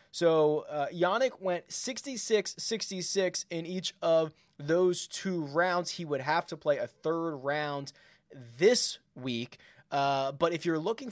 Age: 20-39